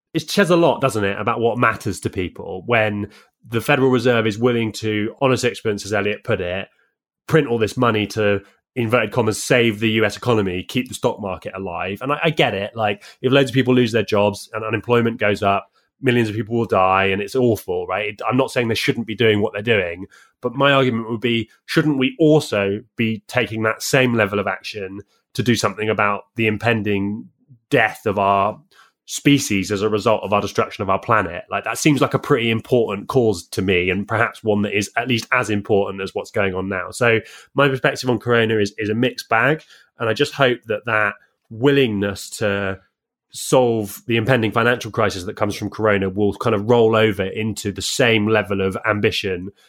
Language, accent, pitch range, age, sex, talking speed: English, British, 100-125 Hz, 20-39, male, 210 wpm